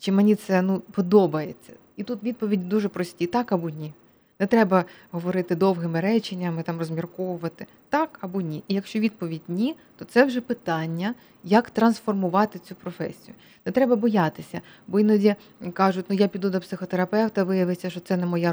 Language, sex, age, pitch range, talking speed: Ukrainian, female, 20-39, 175-215 Hz, 175 wpm